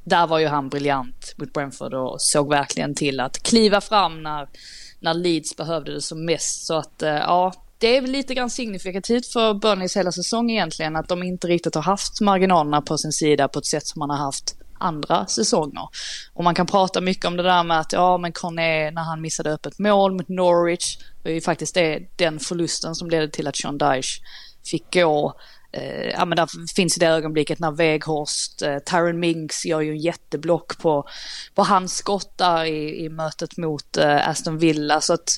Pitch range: 155-190 Hz